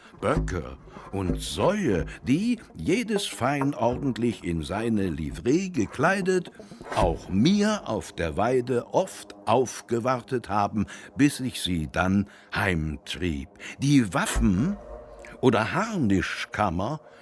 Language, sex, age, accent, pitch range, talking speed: German, male, 60-79, German, 105-170 Hz, 100 wpm